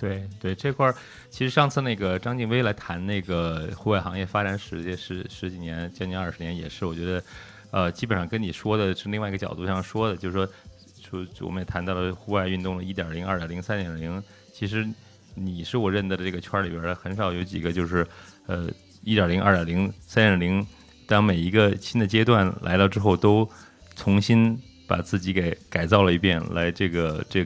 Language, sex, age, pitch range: Chinese, male, 30-49, 90-105 Hz